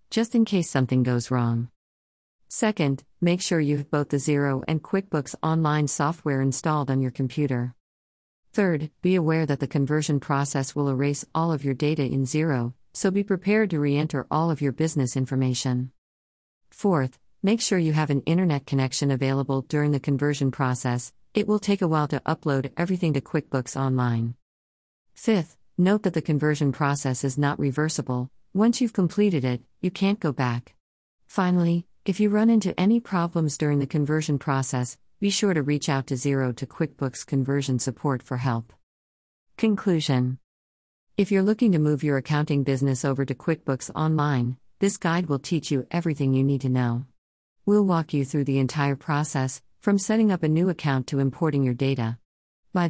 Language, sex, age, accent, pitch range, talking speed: English, female, 40-59, American, 130-165 Hz, 175 wpm